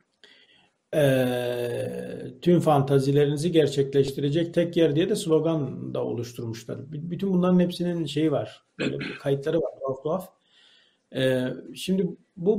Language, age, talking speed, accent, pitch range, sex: Turkish, 40-59, 115 wpm, native, 145-185 Hz, male